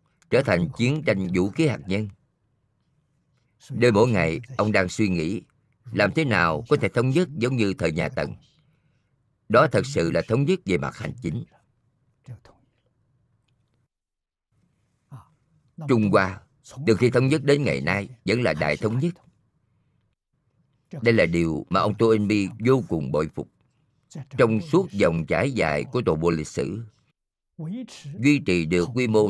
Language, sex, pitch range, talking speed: Vietnamese, male, 105-145 Hz, 155 wpm